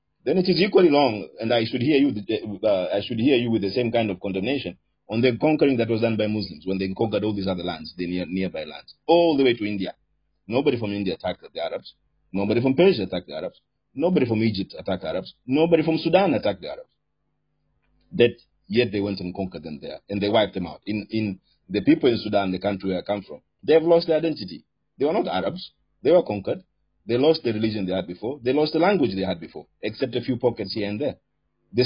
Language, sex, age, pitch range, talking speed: Punjabi, male, 40-59, 100-135 Hz, 235 wpm